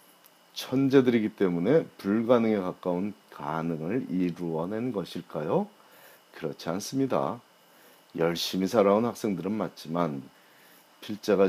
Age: 40-59